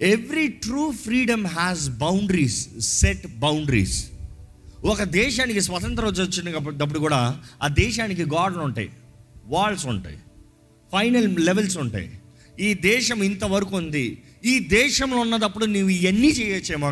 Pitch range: 135-220 Hz